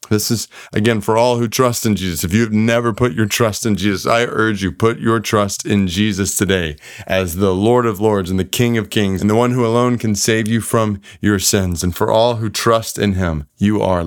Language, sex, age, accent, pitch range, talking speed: English, male, 30-49, American, 95-120 Hz, 240 wpm